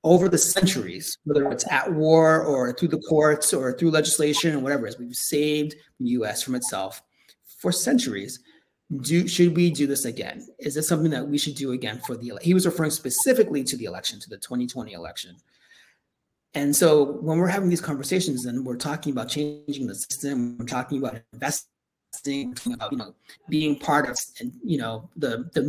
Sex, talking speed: male, 190 wpm